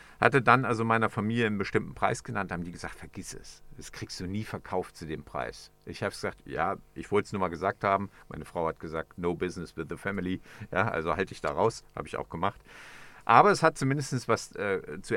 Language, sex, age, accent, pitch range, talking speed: German, male, 50-69, German, 95-125 Hz, 235 wpm